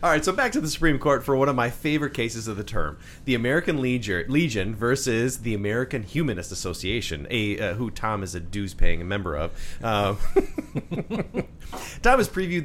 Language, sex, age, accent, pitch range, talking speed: English, male, 30-49, American, 95-130 Hz, 180 wpm